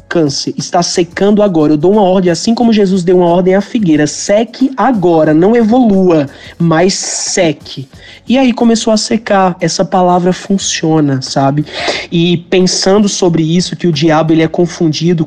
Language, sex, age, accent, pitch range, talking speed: Portuguese, male, 20-39, Brazilian, 160-190 Hz, 160 wpm